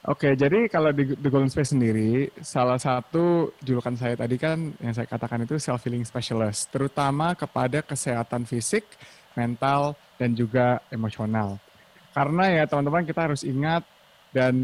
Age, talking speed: 20-39, 140 wpm